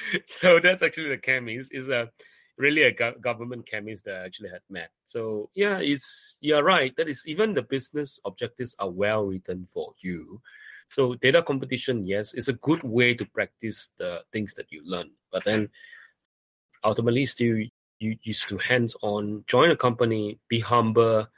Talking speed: 165 wpm